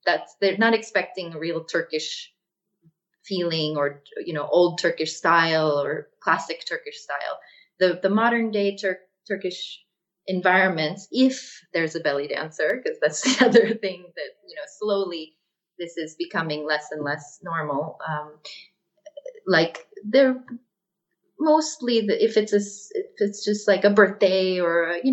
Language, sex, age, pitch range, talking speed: English, female, 30-49, 170-225 Hz, 150 wpm